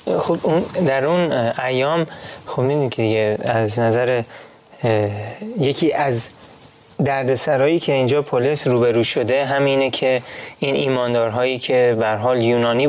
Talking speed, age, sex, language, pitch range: 120 wpm, 30-49, male, Persian, 115-145 Hz